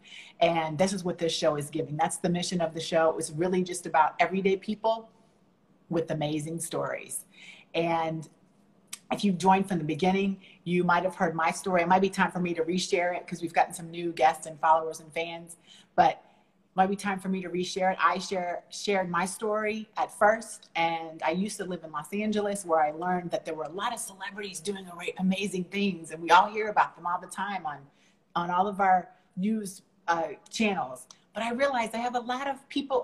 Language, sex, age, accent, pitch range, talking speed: English, female, 30-49, American, 170-210 Hz, 220 wpm